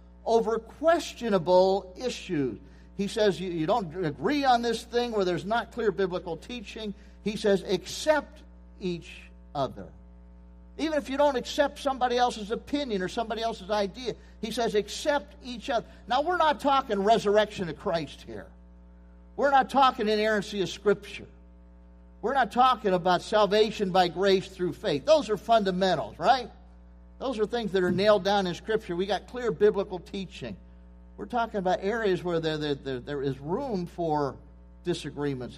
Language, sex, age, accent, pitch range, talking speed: English, male, 50-69, American, 135-215 Hz, 155 wpm